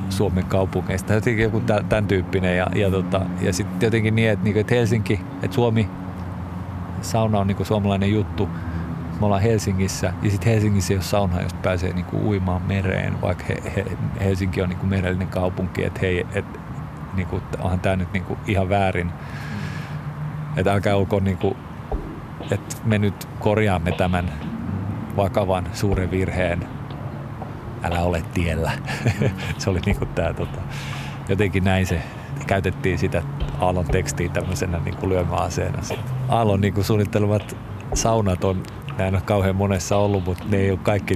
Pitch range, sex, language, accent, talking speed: 90-105 Hz, male, Finnish, native, 145 wpm